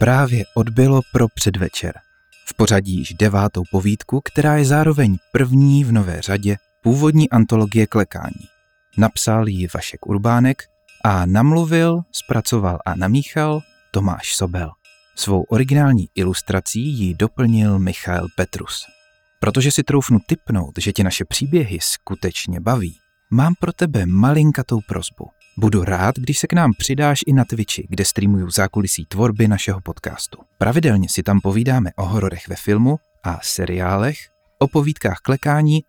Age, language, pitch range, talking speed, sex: 30-49, Czech, 95-135 Hz, 135 wpm, male